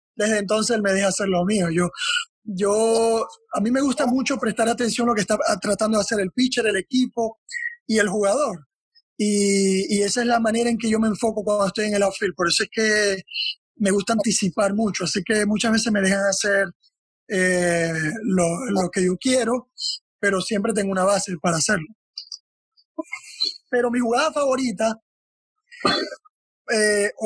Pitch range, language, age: 195-235 Hz, English, 20-39